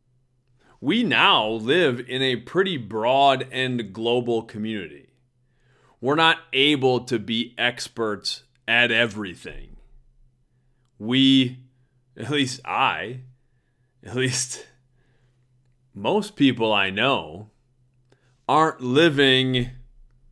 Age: 30-49